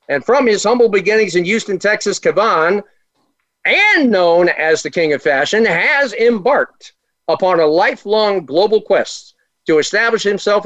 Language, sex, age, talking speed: English, male, 50-69, 145 wpm